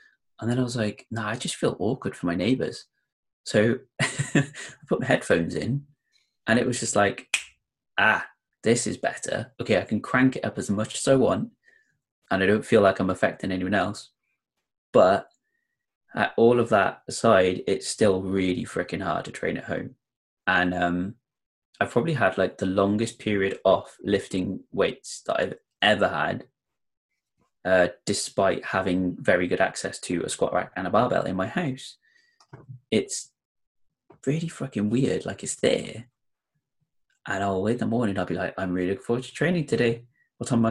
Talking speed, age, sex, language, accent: 180 wpm, 20-39, male, English, British